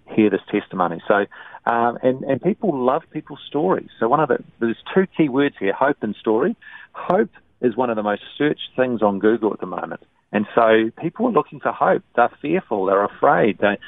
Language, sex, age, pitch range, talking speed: English, male, 40-59, 100-130 Hz, 210 wpm